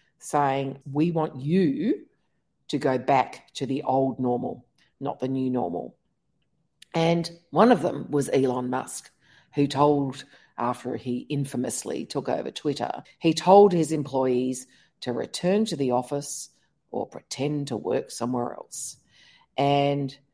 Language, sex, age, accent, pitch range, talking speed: English, female, 50-69, Australian, 125-165 Hz, 135 wpm